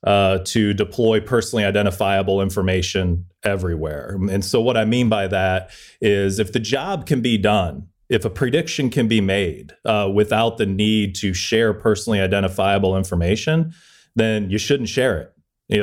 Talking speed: 160 wpm